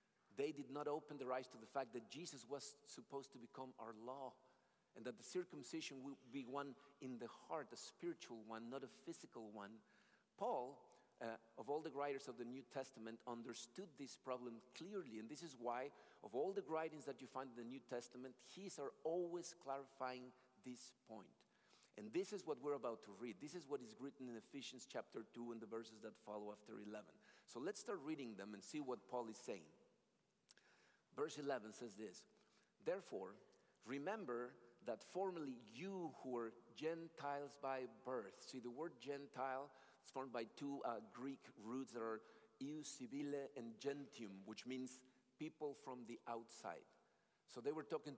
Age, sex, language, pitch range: 50-69, male, English, 120-145 Hz